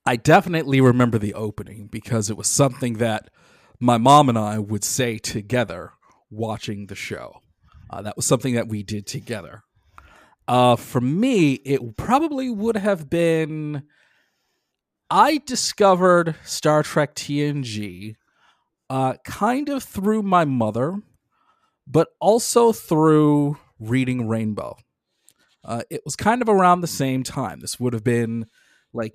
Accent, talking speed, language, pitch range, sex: American, 135 wpm, English, 115-155 Hz, male